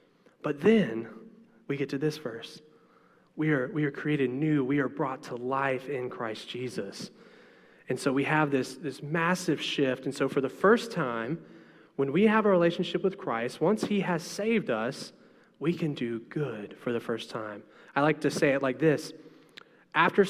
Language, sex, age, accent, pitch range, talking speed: English, male, 20-39, American, 120-155 Hz, 185 wpm